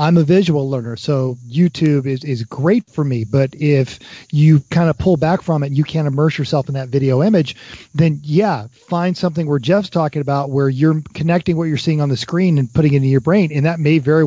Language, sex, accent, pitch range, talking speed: English, male, American, 140-175 Hz, 235 wpm